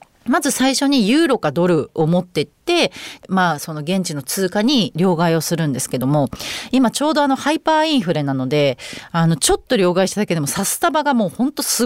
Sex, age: female, 30-49